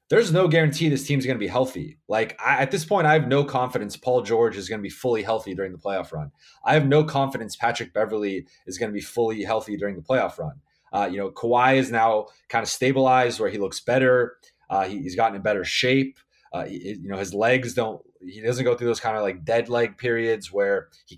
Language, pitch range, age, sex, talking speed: English, 105-135 Hz, 20-39, male, 235 wpm